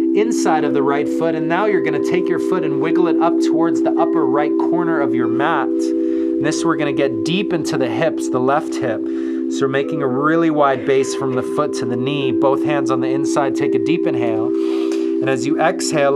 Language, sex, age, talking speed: English, male, 30-49, 235 wpm